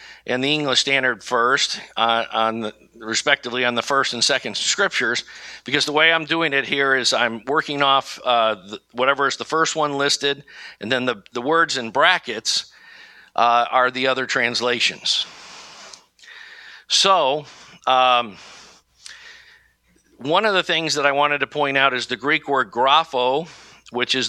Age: 50-69